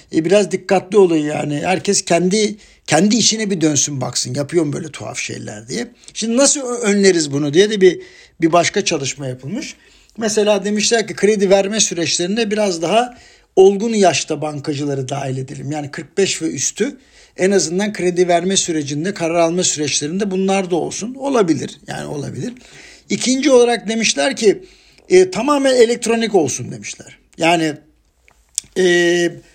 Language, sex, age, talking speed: Turkish, male, 60-79, 140 wpm